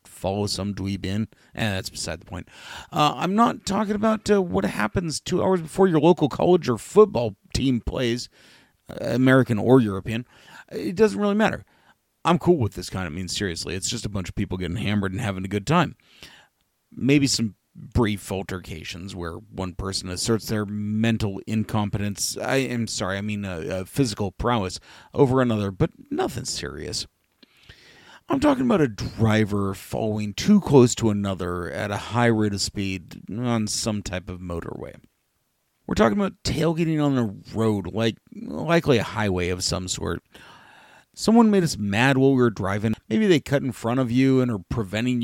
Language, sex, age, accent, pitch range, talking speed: English, male, 40-59, American, 100-135 Hz, 180 wpm